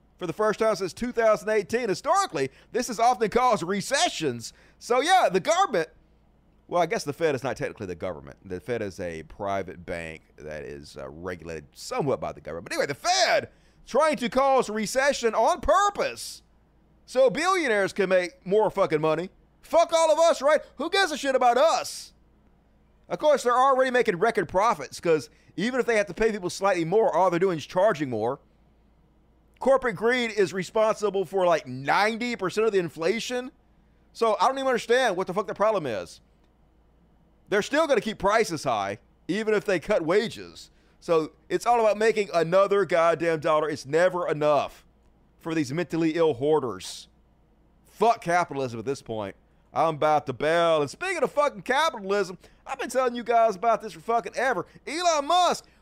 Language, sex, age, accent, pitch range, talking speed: English, male, 30-49, American, 165-255 Hz, 180 wpm